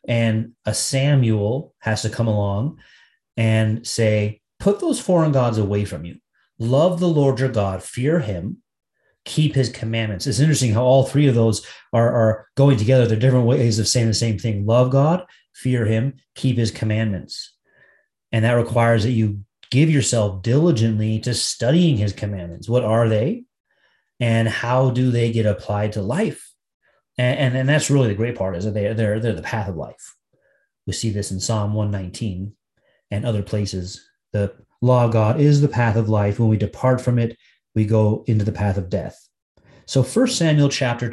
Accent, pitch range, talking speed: American, 105-135 Hz, 185 wpm